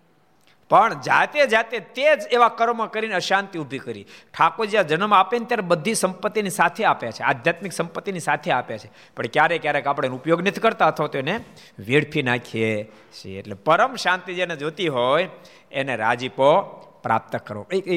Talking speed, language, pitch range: 170 wpm, Gujarati, 125-190 Hz